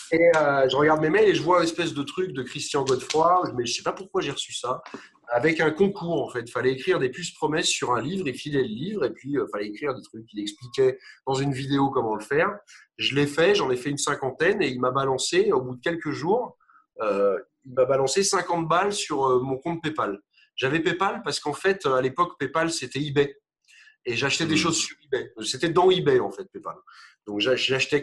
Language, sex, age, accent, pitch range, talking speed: French, male, 30-49, French, 130-185 Hz, 240 wpm